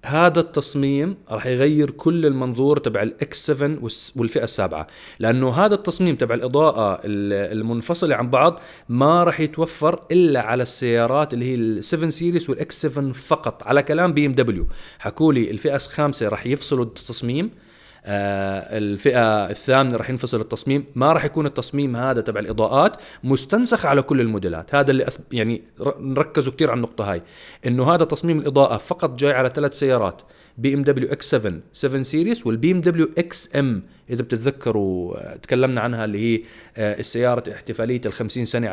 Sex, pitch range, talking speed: male, 110-150 Hz, 145 wpm